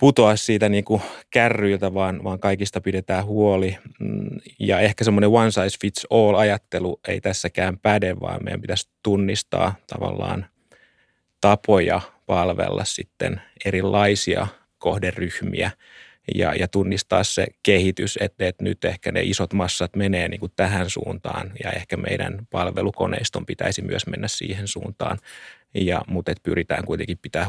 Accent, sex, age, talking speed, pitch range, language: native, male, 30-49, 125 wpm, 95-105 Hz, Finnish